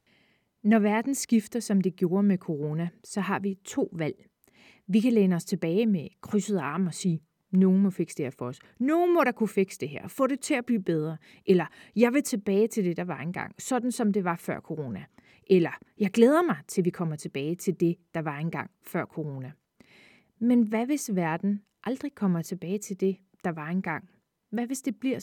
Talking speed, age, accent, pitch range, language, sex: 210 wpm, 30-49, native, 180-230 Hz, Danish, female